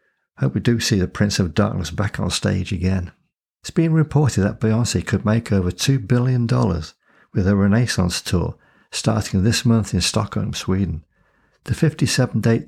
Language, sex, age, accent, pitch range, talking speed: English, male, 60-79, British, 95-120 Hz, 165 wpm